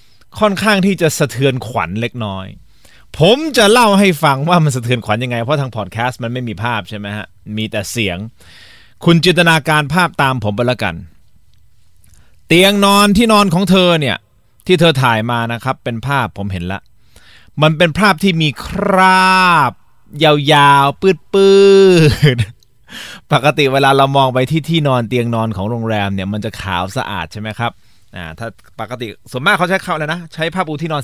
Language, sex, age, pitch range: Thai, male, 20-39, 115-165 Hz